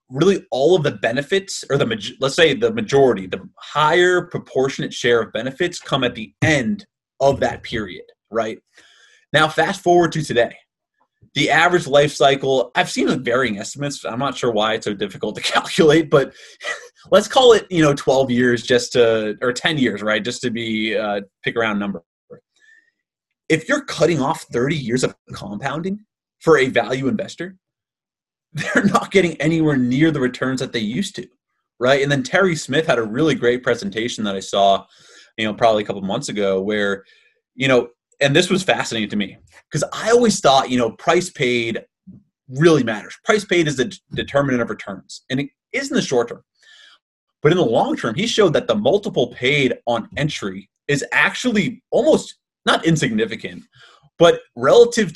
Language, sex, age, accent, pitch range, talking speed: English, male, 30-49, American, 120-180 Hz, 180 wpm